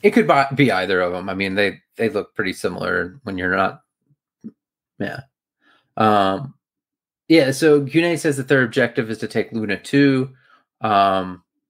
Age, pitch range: 30-49, 95-140 Hz